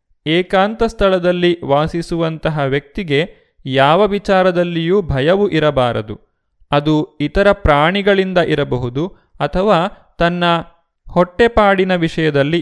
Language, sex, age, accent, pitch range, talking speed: Kannada, male, 30-49, native, 145-190 Hz, 75 wpm